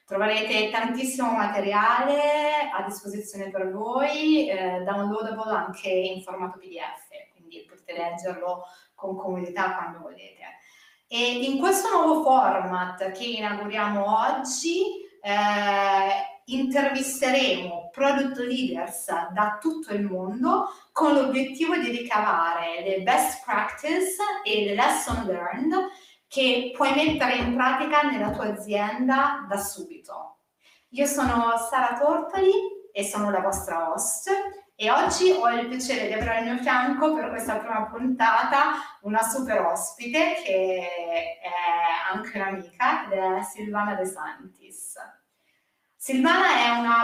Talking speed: 120 wpm